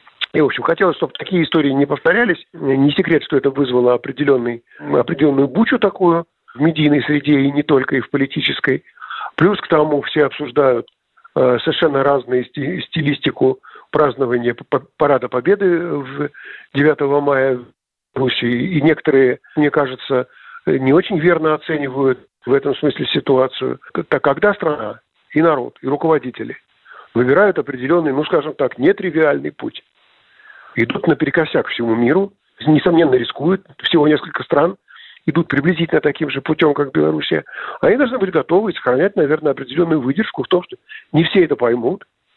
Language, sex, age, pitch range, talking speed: Russian, male, 50-69, 140-175 Hz, 140 wpm